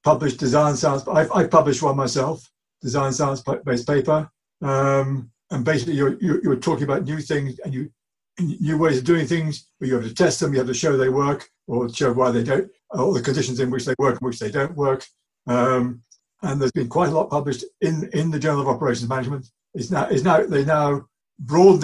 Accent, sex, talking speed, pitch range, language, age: British, male, 220 wpm, 130-155 Hz, English, 60-79